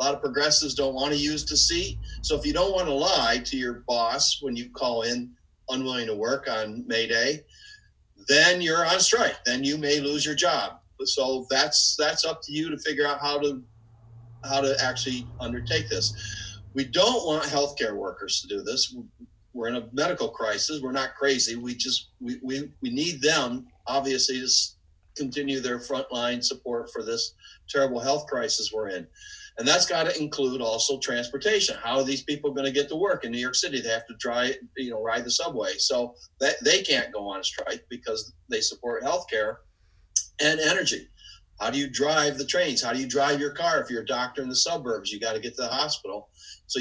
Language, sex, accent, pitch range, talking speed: English, male, American, 120-150 Hz, 210 wpm